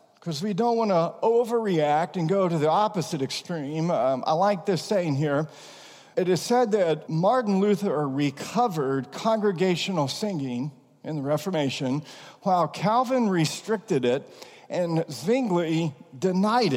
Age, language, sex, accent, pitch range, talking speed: 50-69, English, male, American, 155-215 Hz, 130 wpm